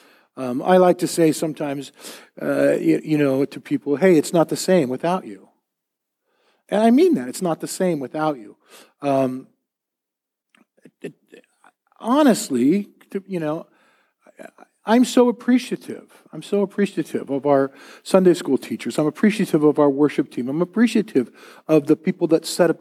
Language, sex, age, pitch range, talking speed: English, male, 50-69, 125-180 Hz, 160 wpm